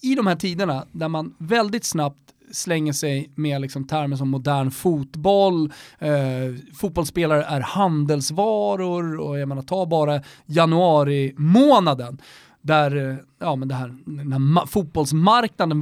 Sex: male